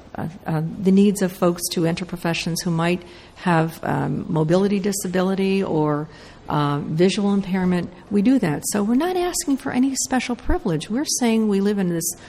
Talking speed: 175 wpm